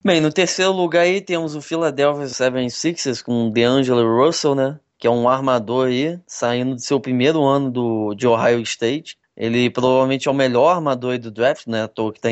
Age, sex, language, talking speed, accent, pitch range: 10-29, male, Portuguese, 210 wpm, Brazilian, 120-150 Hz